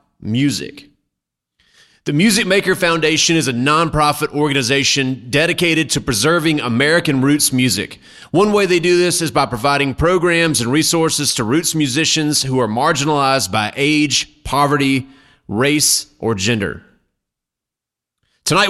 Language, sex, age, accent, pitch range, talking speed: English, male, 30-49, American, 135-170 Hz, 125 wpm